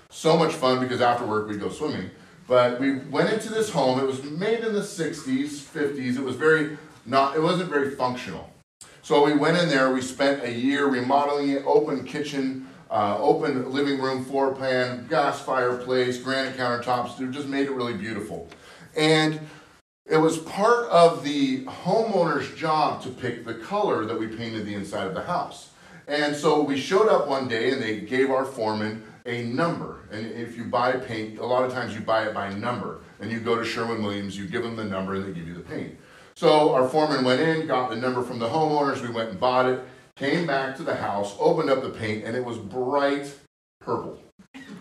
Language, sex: English, male